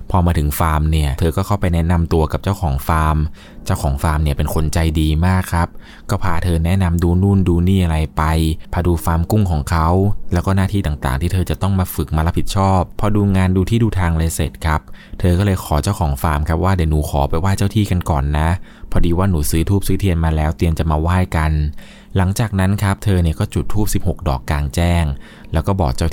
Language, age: Thai, 20-39